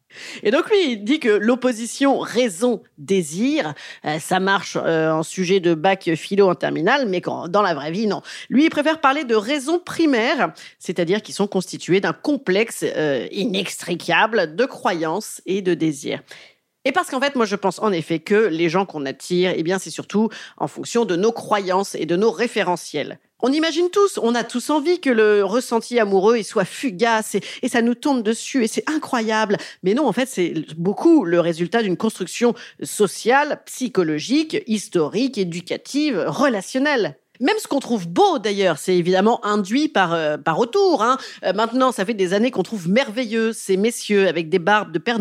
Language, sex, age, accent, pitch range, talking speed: French, female, 40-59, French, 185-275 Hz, 185 wpm